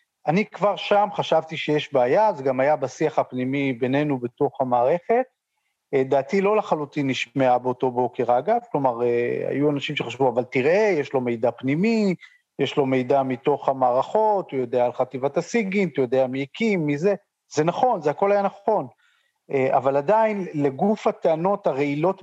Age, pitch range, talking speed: 40-59, 140-195 Hz, 155 wpm